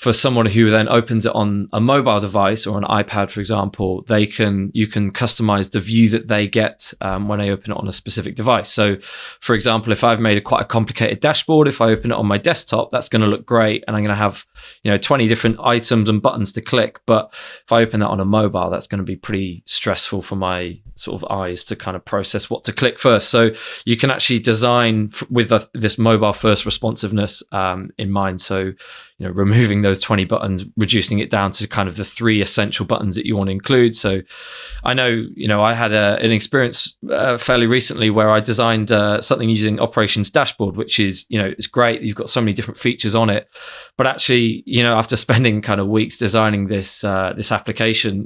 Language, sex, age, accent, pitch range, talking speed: English, male, 20-39, British, 100-115 Hz, 220 wpm